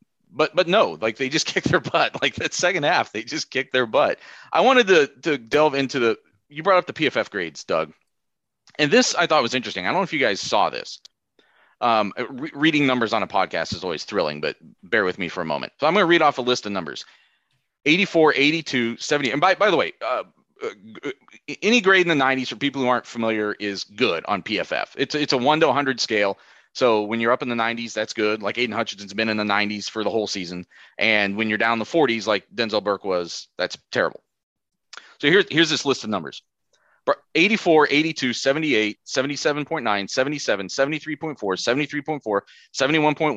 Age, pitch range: 30-49, 110-155 Hz